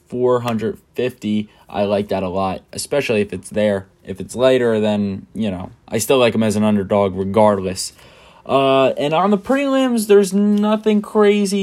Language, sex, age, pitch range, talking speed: English, male, 10-29, 105-140 Hz, 165 wpm